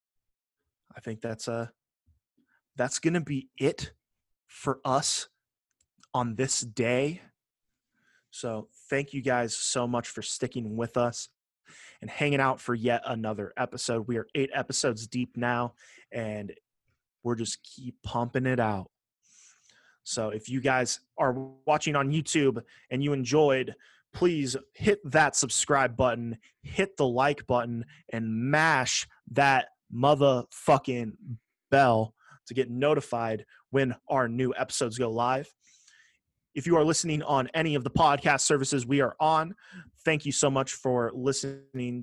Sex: male